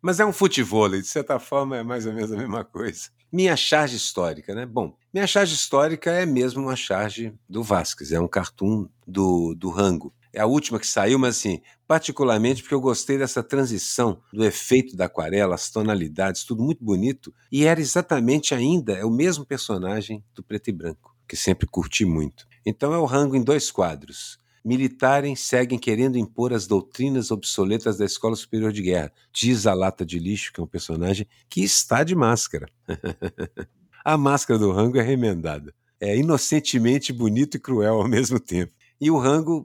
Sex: male